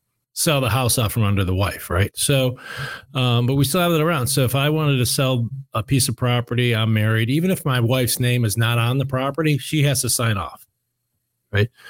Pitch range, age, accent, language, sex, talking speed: 115-140 Hz, 40-59, American, English, male, 225 wpm